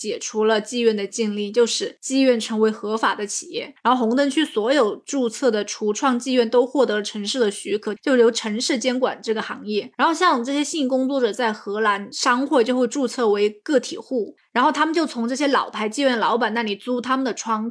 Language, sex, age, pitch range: Chinese, female, 20-39, 225-275 Hz